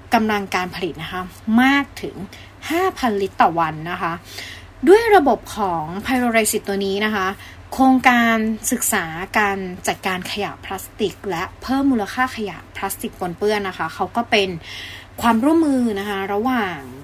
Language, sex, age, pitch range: English, female, 20-39, 185-235 Hz